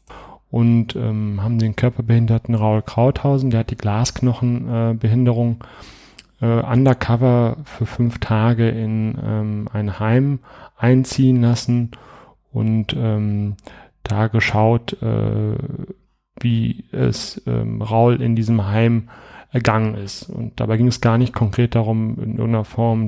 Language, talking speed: German, 125 wpm